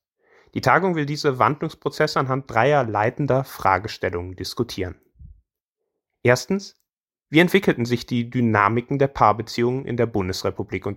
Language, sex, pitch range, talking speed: German, male, 110-150 Hz, 120 wpm